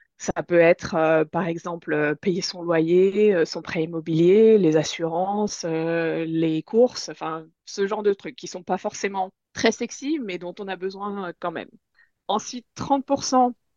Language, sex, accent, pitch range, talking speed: French, female, French, 175-230 Hz, 175 wpm